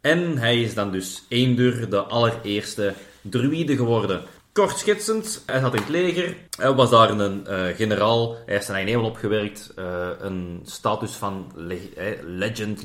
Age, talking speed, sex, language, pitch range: 30-49, 170 wpm, male, Dutch, 100-130 Hz